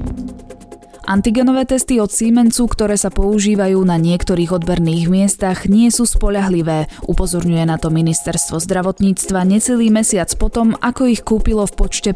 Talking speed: 135 wpm